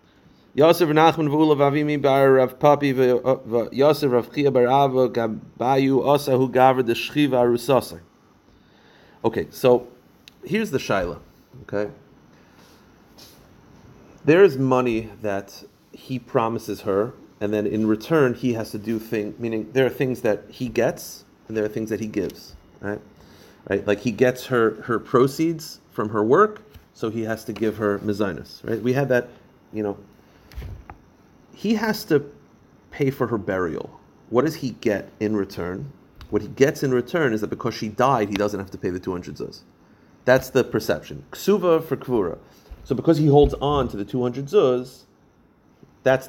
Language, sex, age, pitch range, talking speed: English, male, 30-49, 110-140 Hz, 140 wpm